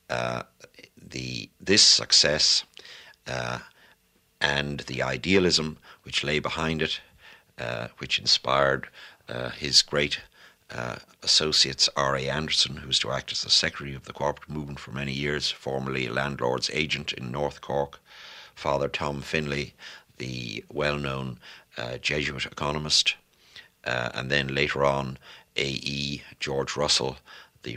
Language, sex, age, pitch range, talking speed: English, male, 60-79, 65-75 Hz, 130 wpm